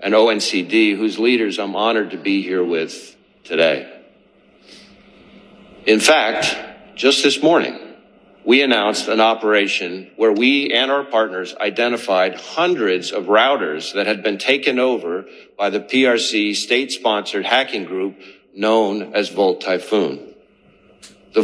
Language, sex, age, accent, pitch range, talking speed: English, male, 50-69, American, 105-140 Hz, 125 wpm